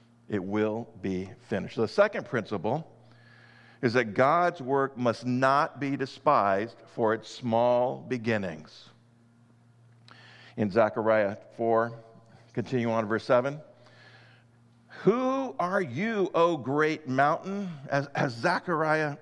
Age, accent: 50-69, American